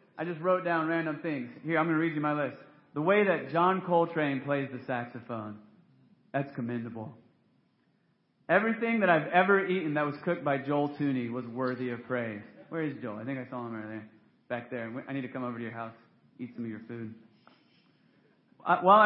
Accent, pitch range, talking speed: American, 130-170 Hz, 200 wpm